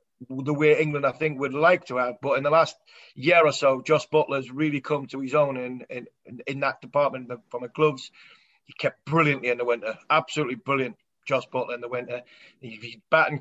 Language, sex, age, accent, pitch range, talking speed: English, male, 30-49, British, 130-155 Hz, 215 wpm